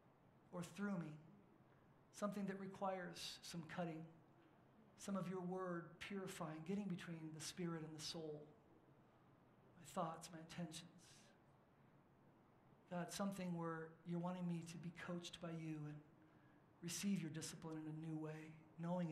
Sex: male